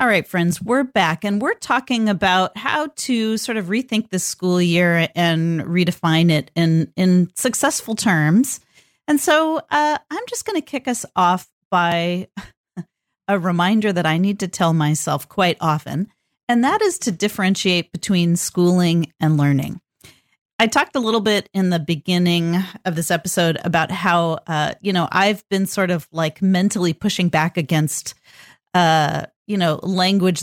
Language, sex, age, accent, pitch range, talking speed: English, female, 40-59, American, 165-200 Hz, 165 wpm